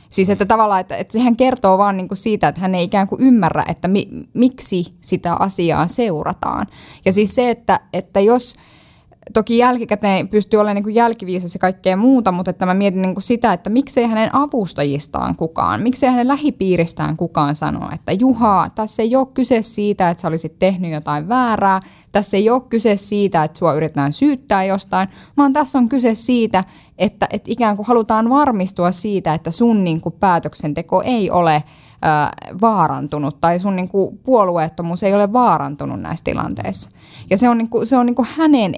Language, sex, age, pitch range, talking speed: Finnish, female, 10-29, 180-240 Hz, 165 wpm